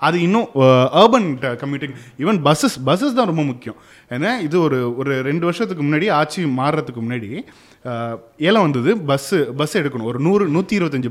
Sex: male